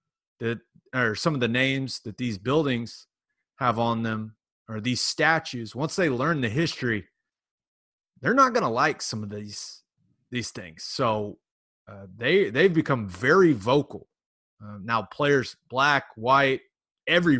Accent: American